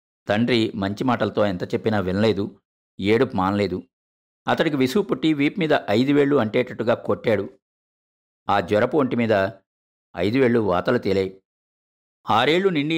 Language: Telugu